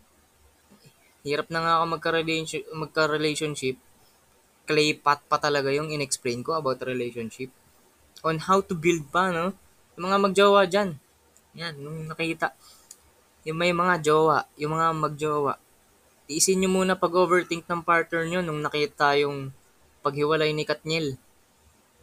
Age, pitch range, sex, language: 20-39, 135-170 Hz, female, Filipino